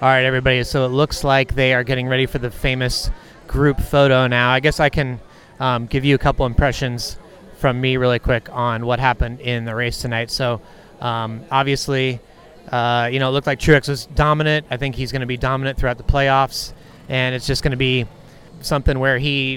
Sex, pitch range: male, 125-140 Hz